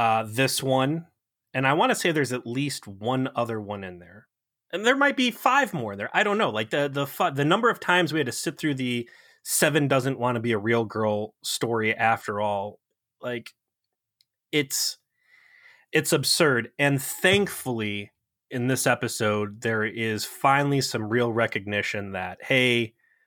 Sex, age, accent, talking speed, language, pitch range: male, 30-49, American, 175 wpm, English, 110-140 Hz